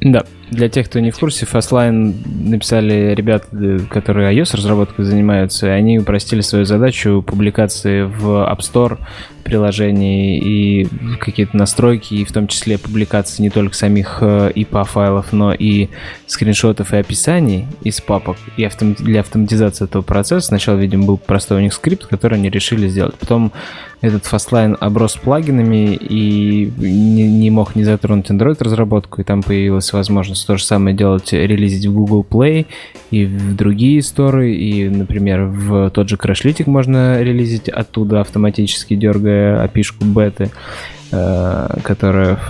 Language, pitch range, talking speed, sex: Russian, 100-115 Hz, 140 wpm, male